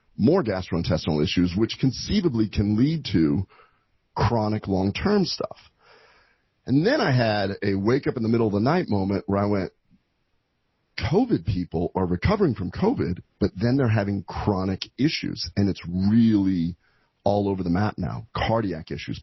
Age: 40-59